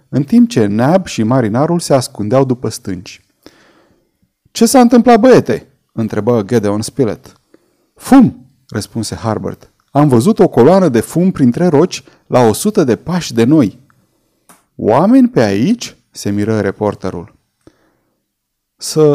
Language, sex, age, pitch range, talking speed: Romanian, male, 30-49, 110-170 Hz, 130 wpm